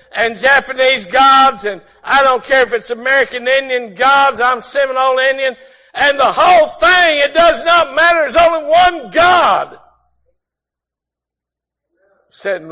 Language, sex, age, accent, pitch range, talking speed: English, male, 60-79, American, 170-260 Hz, 130 wpm